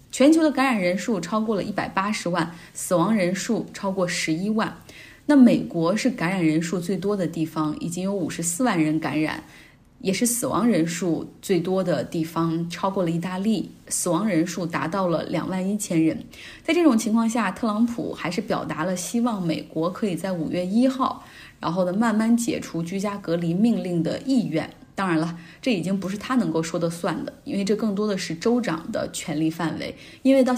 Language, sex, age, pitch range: Chinese, female, 20-39, 170-225 Hz